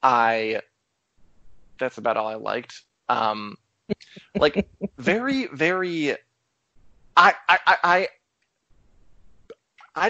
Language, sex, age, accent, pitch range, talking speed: English, male, 20-39, American, 125-155 Hz, 85 wpm